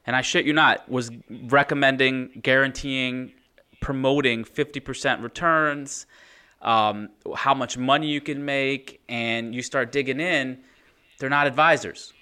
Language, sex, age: English, male, 30-49